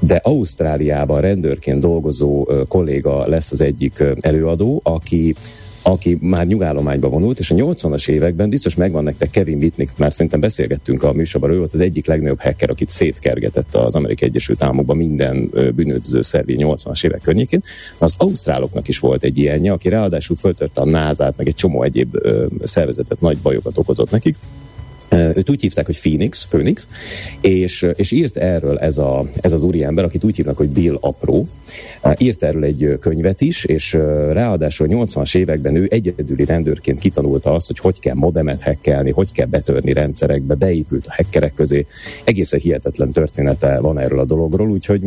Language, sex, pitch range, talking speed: Hungarian, male, 75-90 Hz, 165 wpm